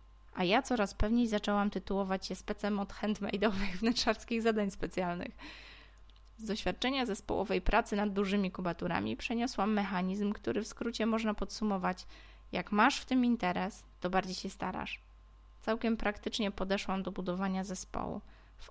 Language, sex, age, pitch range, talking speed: Polish, female, 20-39, 185-220 Hz, 140 wpm